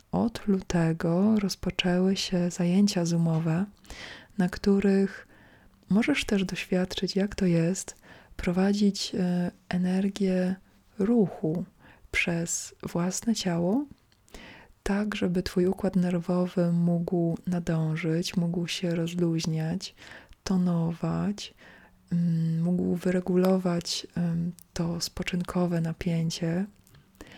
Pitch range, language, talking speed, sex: 170-195 Hz, Polish, 80 wpm, female